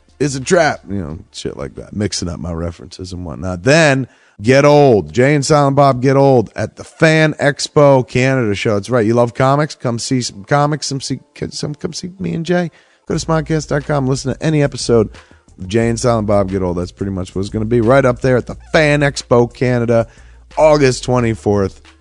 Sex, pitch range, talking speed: male, 105-135 Hz, 210 wpm